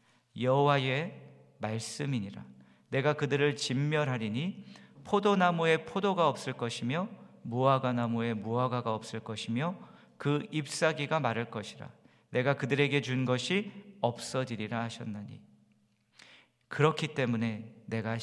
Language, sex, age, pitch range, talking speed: English, male, 40-59, 120-175 Hz, 85 wpm